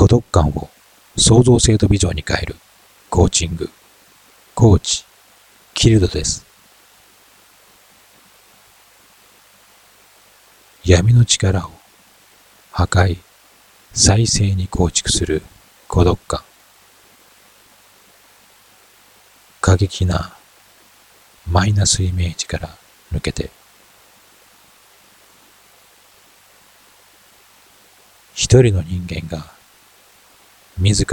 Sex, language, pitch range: male, Japanese, 85-100 Hz